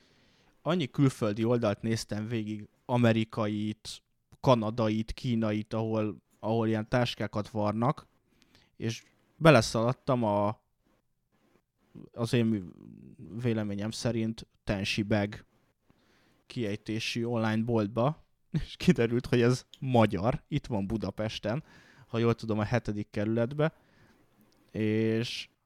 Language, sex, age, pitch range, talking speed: Hungarian, male, 20-39, 105-120 Hz, 90 wpm